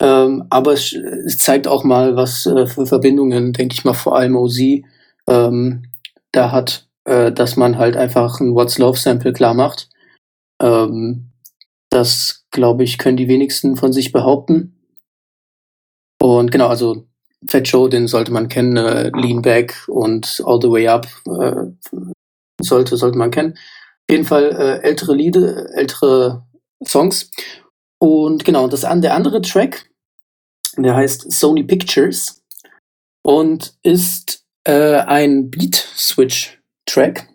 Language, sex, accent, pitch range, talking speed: German, male, German, 125-145 Hz, 140 wpm